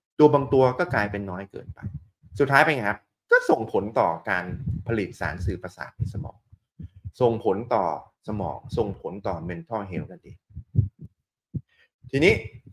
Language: Thai